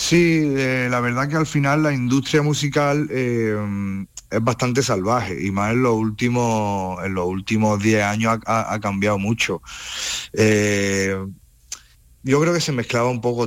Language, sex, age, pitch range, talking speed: Spanish, male, 30-49, 100-125 Hz, 150 wpm